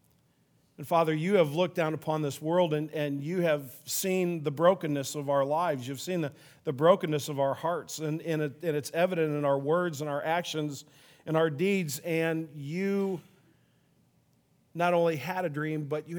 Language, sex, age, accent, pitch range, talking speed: English, male, 40-59, American, 135-160 Hz, 185 wpm